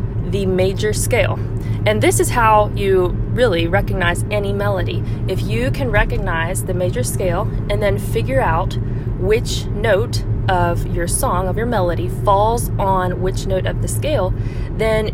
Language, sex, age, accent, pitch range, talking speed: English, female, 20-39, American, 110-130 Hz, 150 wpm